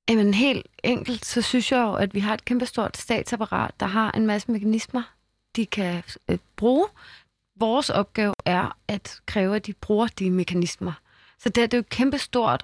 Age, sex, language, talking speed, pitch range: 20-39, female, Danish, 185 wpm, 195-235 Hz